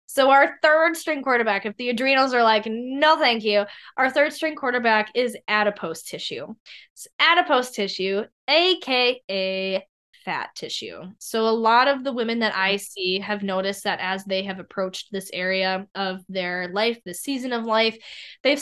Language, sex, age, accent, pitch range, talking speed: English, female, 10-29, American, 200-270 Hz, 165 wpm